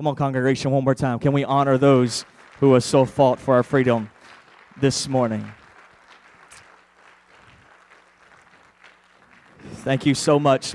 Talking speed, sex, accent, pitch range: 130 wpm, male, American, 125-140 Hz